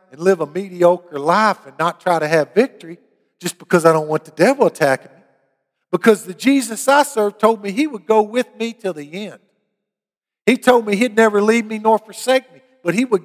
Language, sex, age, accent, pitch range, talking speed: English, male, 50-69, American, 165-230 Hz, 215 wpm